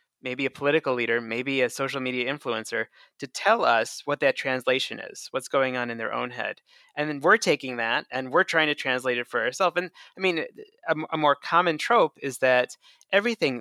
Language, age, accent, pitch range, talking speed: English, 20-39, American, 120-145 Hz, 205 wpm